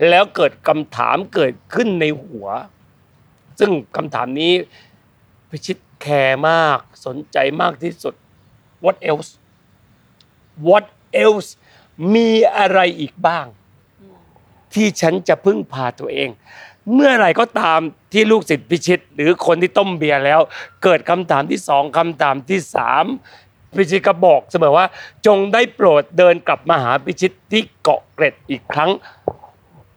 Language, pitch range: Thai, 145-200 Hz